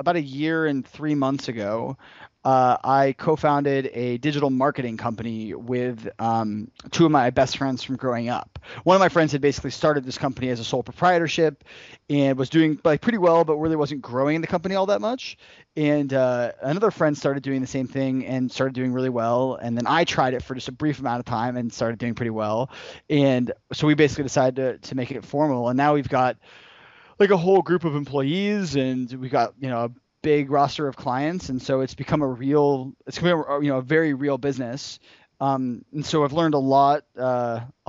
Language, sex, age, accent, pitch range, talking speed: English, male, 30-49, American, 125-150 Hz, 215 wpm